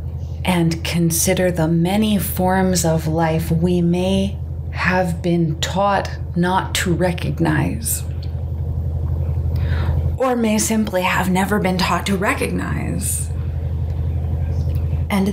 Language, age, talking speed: English, 30-49, 100 wpm